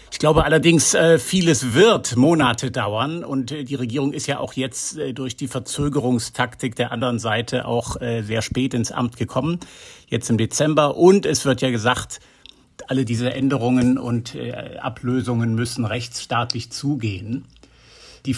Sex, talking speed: male, 140 wpm